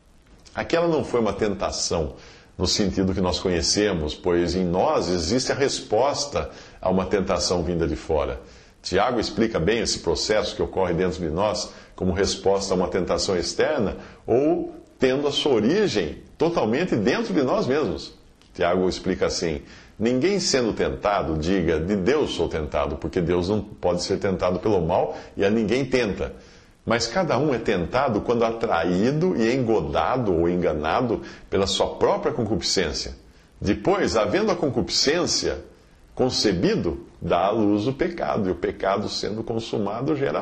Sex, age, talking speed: male, 50-69, 150 wpm